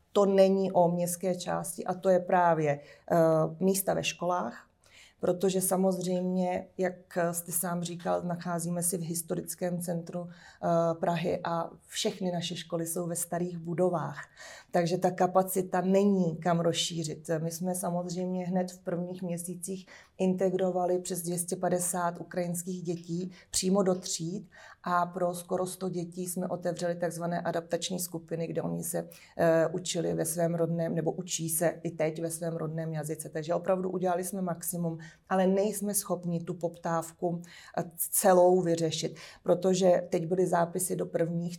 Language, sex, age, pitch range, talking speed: Slovak, female, 30-49, 170-185 Hz, 145 wpm